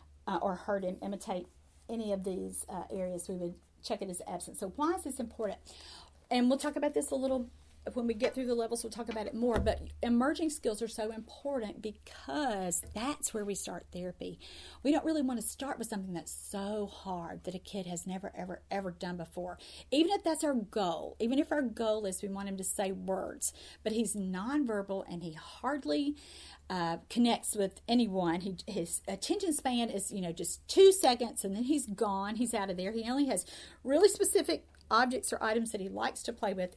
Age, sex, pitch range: 40-59, female, 185-245 Hz